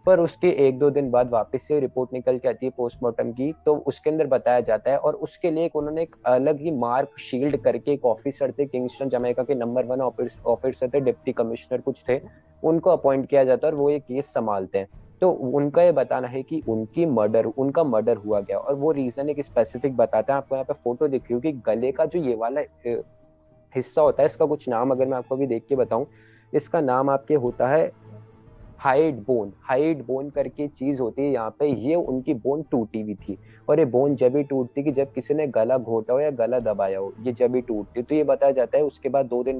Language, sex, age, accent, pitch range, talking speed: Hindi, male, 20-39, native, 120-145 Hz, 230 wpm